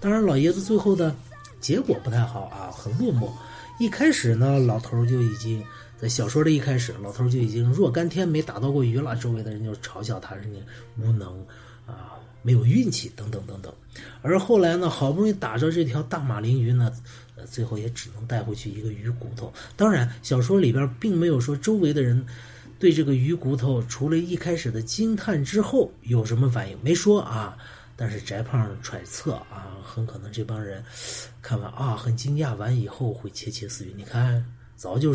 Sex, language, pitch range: male, Chinese, 115-130 Hz